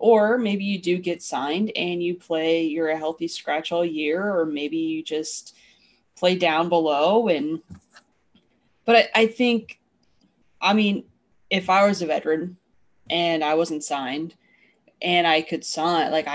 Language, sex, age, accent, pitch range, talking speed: English, female, 20-39, American, 155-210 Hz, 160 wpm